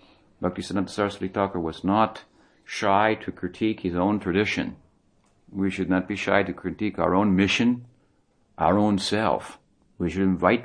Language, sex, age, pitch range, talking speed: English, male, 50-69, 90-105 Hz, 150 wpm